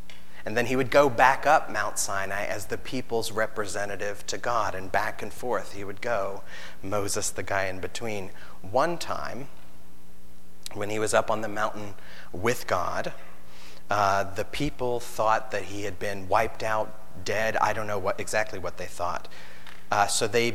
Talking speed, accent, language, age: 175 wpm, American, English, 30-49